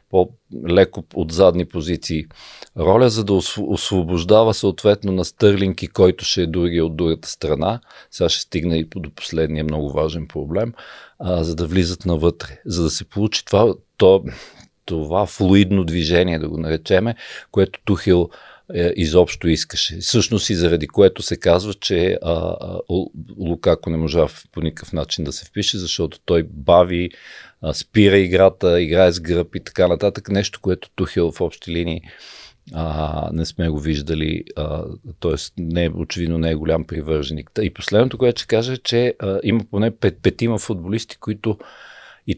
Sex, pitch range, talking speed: male, 80-100 Hz, 160 wpm